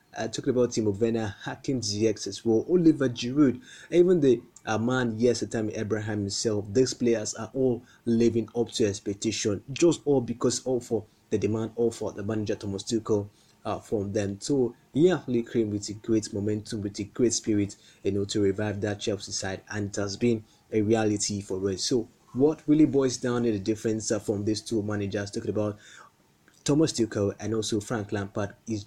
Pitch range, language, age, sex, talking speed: 105-120 Hz, English, 20-39, male, 195 wpm